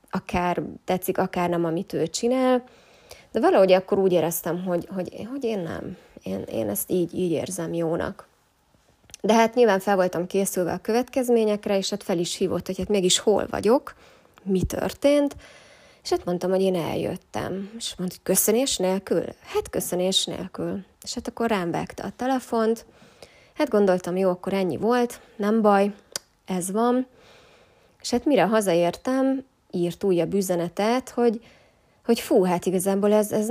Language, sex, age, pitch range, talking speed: Hungarian, female, 20-39, 185-235 Hz, 160 wpm